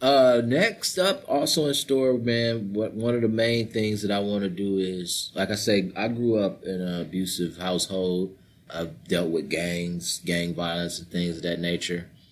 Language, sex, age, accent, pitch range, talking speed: English, male, 20-39, American, 90-110 Hz, 190 wpm